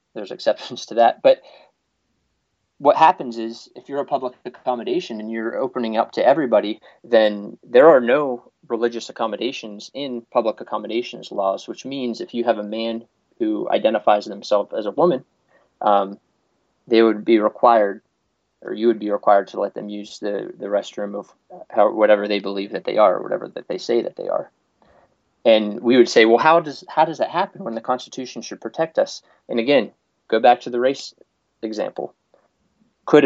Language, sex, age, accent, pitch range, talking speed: English, male, 30-49, American, 105-120 Hz, 180 wpm